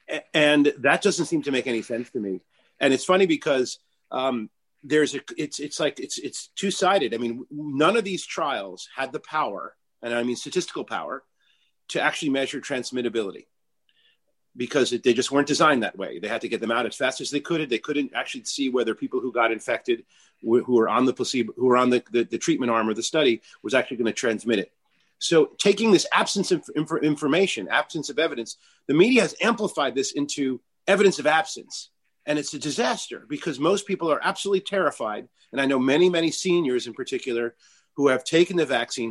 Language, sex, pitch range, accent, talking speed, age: English, male, 130-185 Hz, American, 200 wpm, 40-59